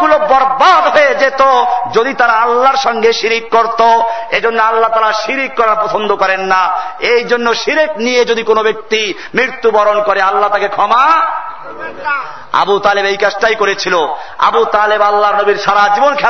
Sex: male